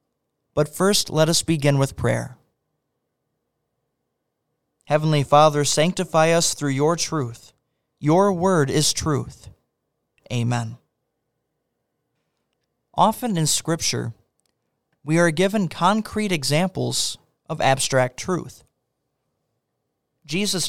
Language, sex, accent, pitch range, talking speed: English, male, American, 135-175 Hz, 90 wpm